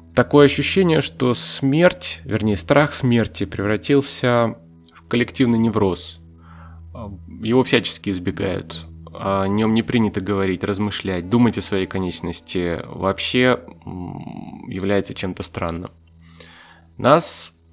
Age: 20-39